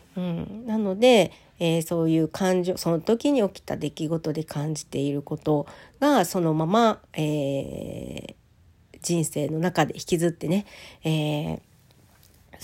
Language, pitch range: Japanese, 155-220 Hz